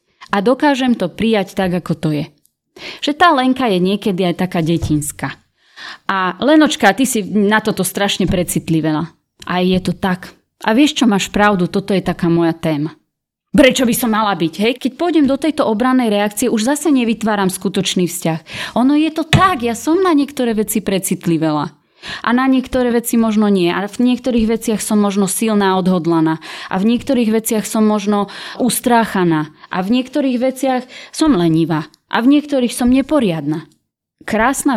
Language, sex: Slovak, female